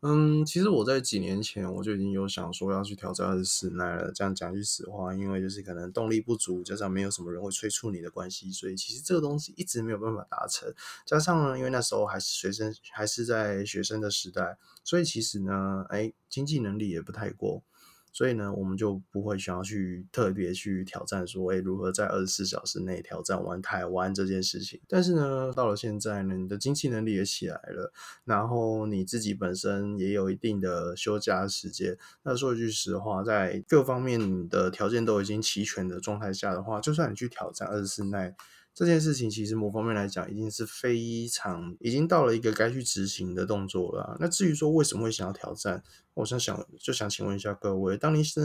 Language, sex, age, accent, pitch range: Chinese, male, 20-39, native, 95-115 Hz